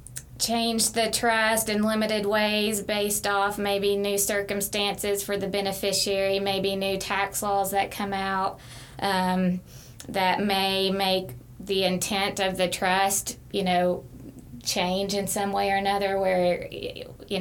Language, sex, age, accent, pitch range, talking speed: English, female, 20-39, American, 170-200 Hz, 140 wpm